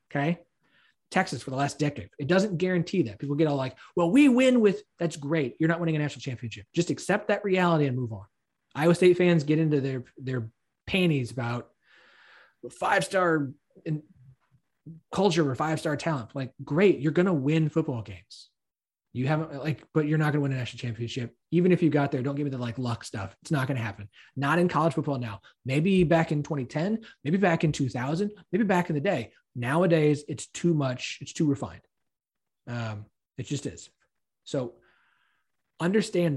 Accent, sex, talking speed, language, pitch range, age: American, male, 190 wpm, English, 130-170 Hz, 30-49